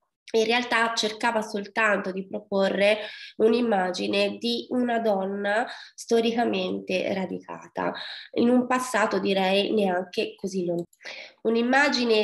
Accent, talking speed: native, 100 wpm